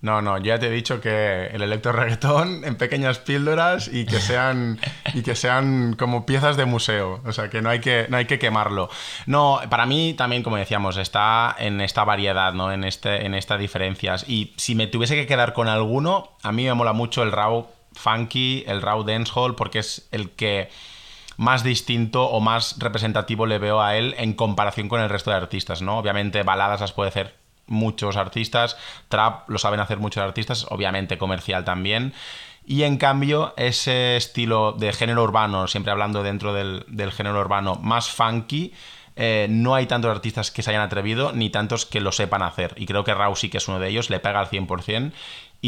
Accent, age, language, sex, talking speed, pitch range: Spanish, 30-49, Spanish, male, 195 wpm, 100-120 Hz